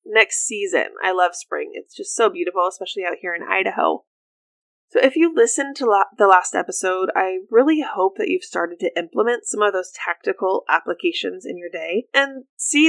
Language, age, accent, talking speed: English, 20-39, American, 190 wpm